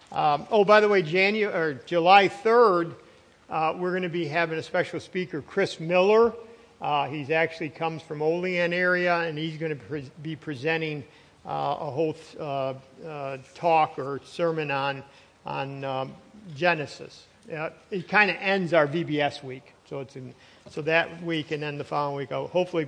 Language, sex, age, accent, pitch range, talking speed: English, male, 50-69, American, 145-190 Hz, 175 wpm